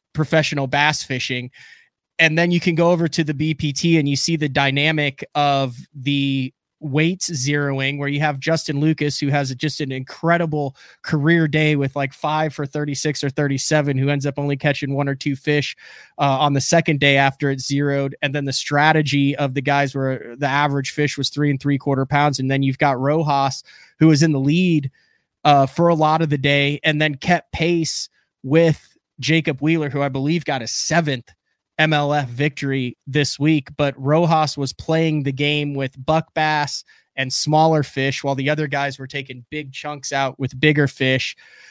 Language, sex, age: English, male, 20-39